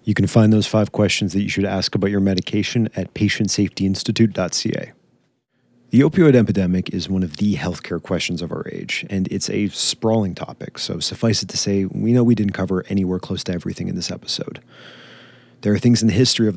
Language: English